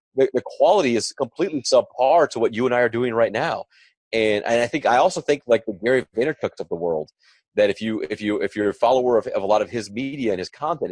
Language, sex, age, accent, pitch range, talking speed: English, male, 30-49, American, 110-145 Hz, 260 wpm